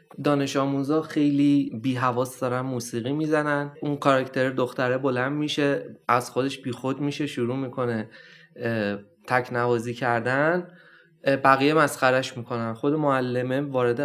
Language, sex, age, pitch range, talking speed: Persian, male, 20-39, 115-145 Hz, 125 wpm